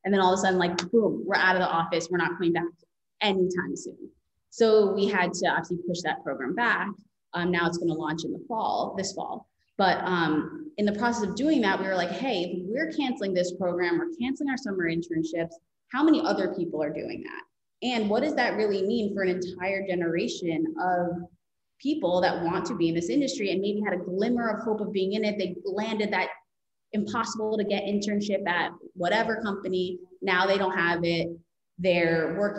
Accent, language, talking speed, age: American, English, 210 wpm, 20-39